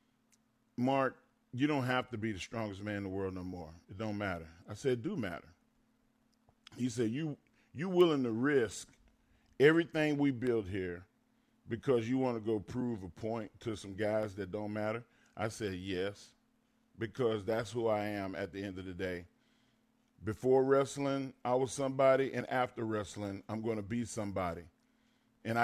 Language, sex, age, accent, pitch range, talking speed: English, male, 40-59, American, 105-155 Hz, 175 wpm